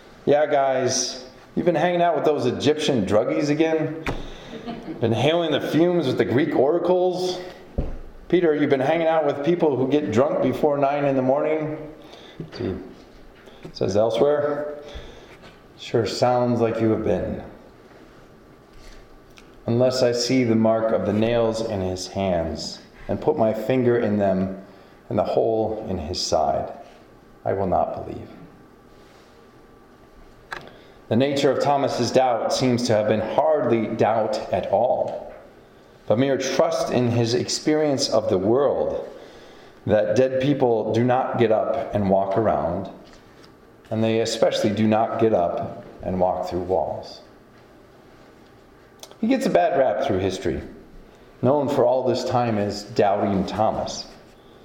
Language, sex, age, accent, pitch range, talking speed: English, male, 30-49, American, 110-150 Hz, 140 wpm